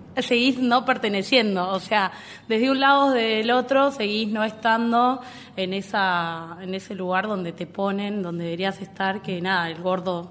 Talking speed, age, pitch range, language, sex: 170 wpm, 20-39, 180-215 Hz, Spanish, female